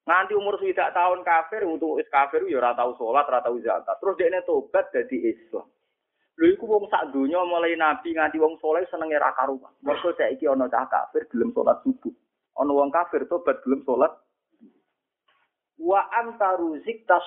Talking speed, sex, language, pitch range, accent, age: 170 wpm, male, Indonesian, 170-270 Hz, native, 30-49